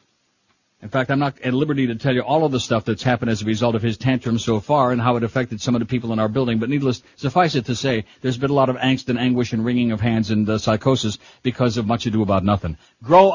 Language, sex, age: English, male, 60-79